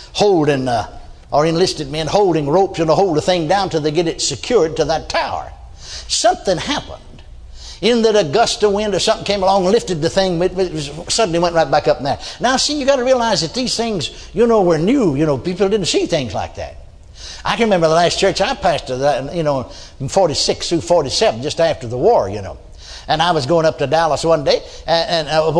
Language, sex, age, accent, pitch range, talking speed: English, male, 60-79, American, 155-205 Hz, 240 wpm